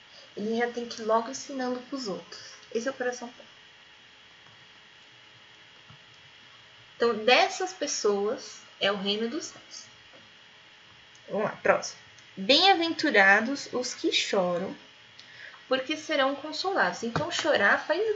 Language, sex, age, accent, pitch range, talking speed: Portuguese, female, 20-39, Brazilian, 195-290 Hz, 115 wpm